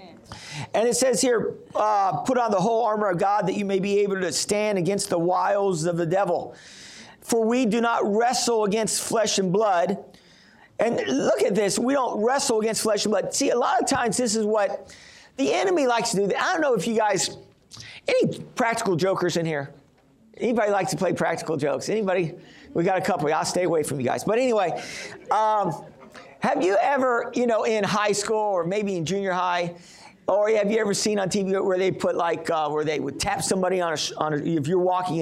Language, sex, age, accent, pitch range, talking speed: English, male, 50-69, American, 175-215 Hz, 220 wpm